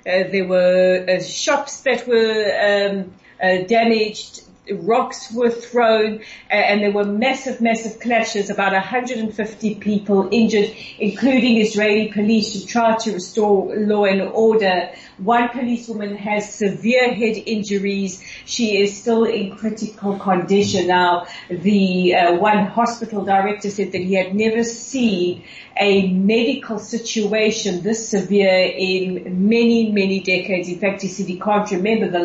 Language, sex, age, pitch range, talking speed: English, female, 40-59, 185-220 Hz, 140 wpm